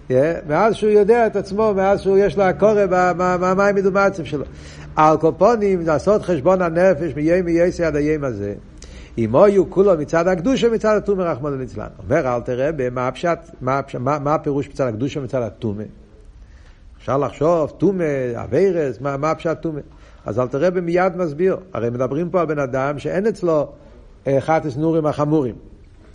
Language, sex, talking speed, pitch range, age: Hebrew, male, 150 wpm, 125-180 Hz, 60-79